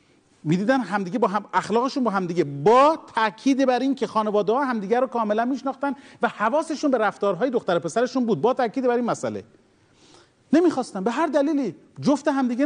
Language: Persian